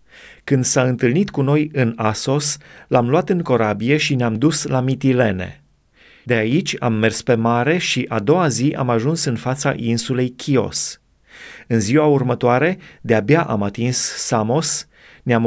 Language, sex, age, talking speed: Romanian, male, 30-49, 155 wpm